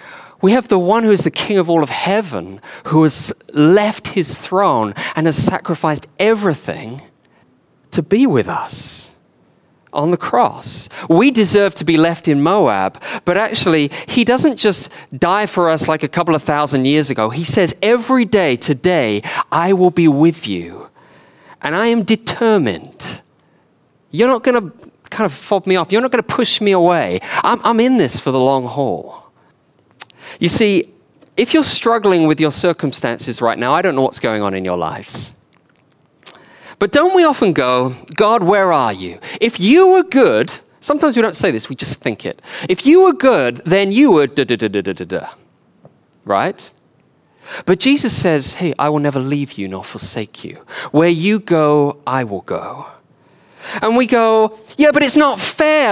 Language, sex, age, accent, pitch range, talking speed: English, male, 40-59, British, 140-220 Hz, 180 wpm